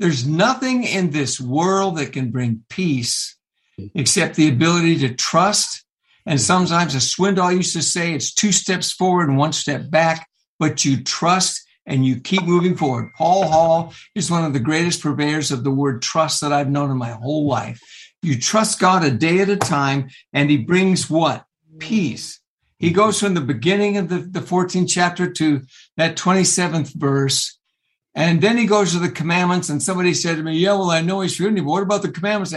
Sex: male